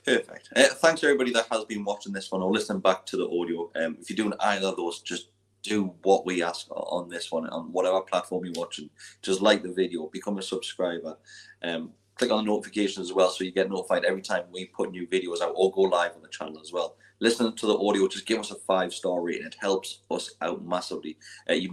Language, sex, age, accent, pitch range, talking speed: English, male, 30-49, British, 90-115 Hz, 240 wpm